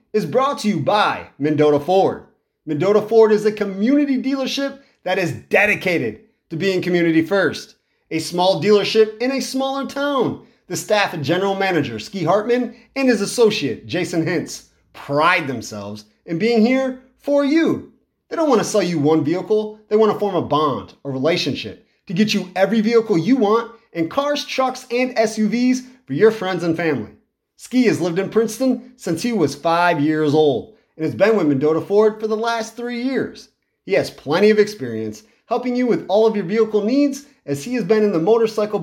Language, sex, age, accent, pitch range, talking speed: English, male, 30-49, American, 160-235 Hz, 185 wpm